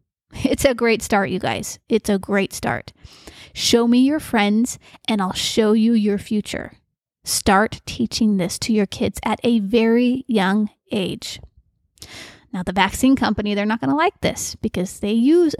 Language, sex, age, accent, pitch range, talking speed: English, female, 30-49, American, 210-250 Hz, 170 wpm